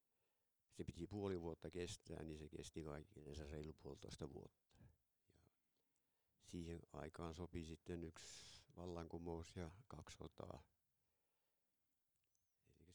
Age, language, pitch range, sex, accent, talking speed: 60-79, Finnish, 80-90 Hz, male, native, 100 wpm